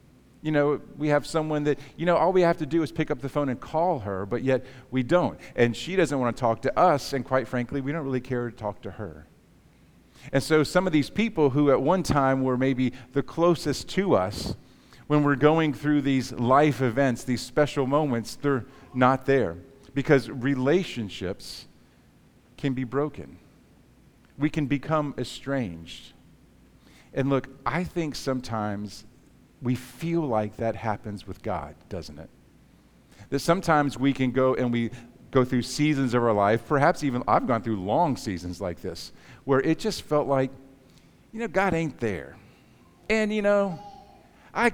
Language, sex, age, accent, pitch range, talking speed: English, male, 50-69, American, 115-150 Hz, 175 wpm